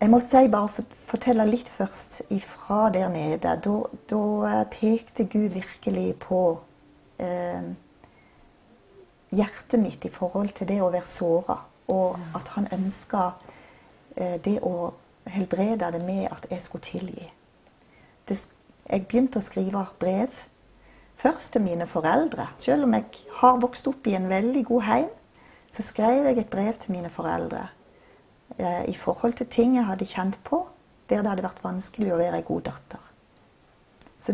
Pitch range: 180-235 Hz